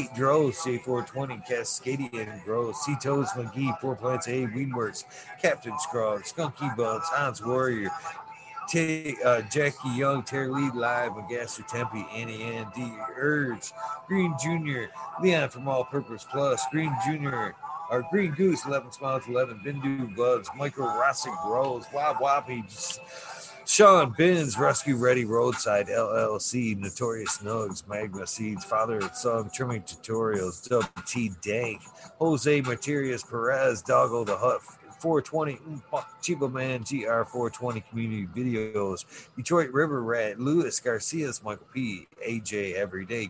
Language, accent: English, American